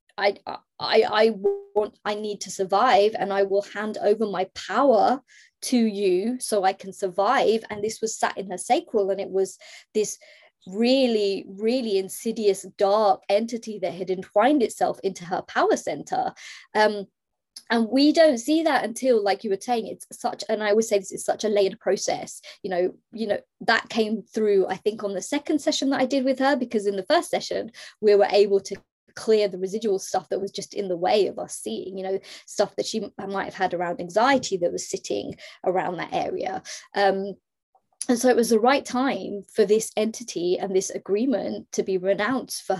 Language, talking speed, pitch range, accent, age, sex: English, 200 wpm, 195-240 Hz, British, 20-39, female